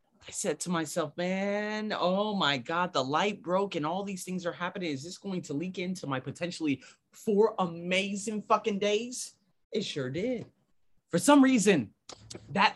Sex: male